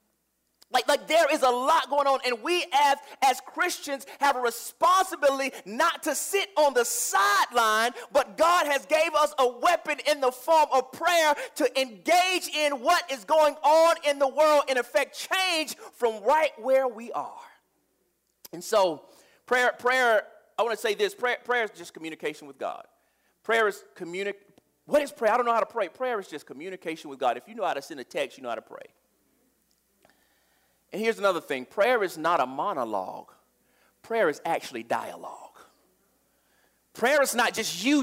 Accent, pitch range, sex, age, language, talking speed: American, 235-300 Hz, male, 30-49, English, 185 wpm